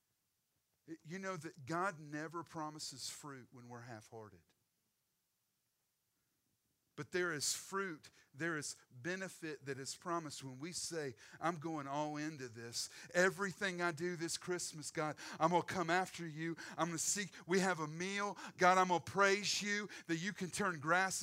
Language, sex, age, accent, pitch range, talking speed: English, male, 40-59, American, 160-225 Hz, 165 wpm